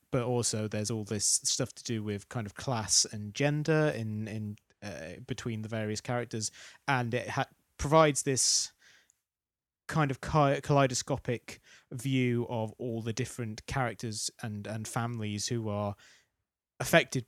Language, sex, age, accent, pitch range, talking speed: English, male, 20-39, British, 105-130 Hz, 145 wpm